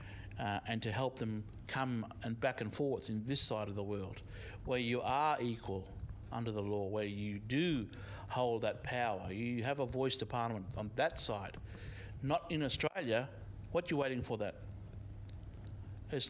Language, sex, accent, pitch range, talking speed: English, male, Australian, 100-145 Hz, 175 wpm